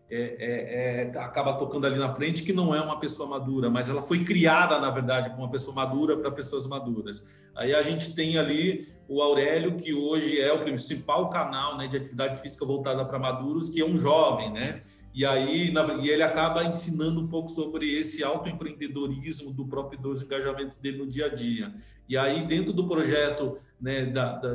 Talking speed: 200 wpm